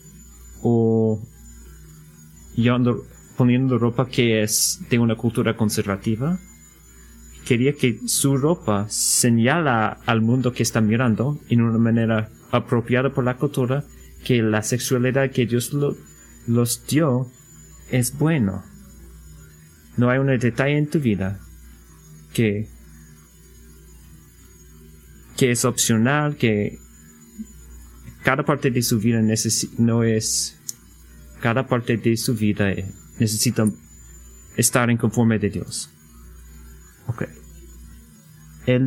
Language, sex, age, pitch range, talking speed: Spanish, male, 30-49, 75-125 Hz, 110 wpm